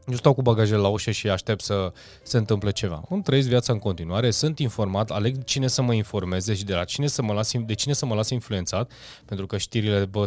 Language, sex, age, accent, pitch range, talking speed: Romanian, male, 20-39, native, 105-130 Hz, 240 wpm